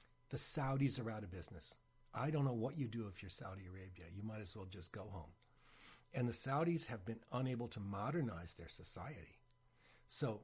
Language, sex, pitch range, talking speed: English, male, 95-125 Hz, 195 wpm